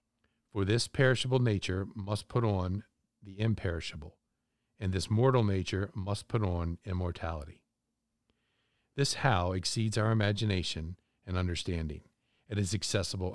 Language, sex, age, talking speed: English, male, 50-69, 120 wpm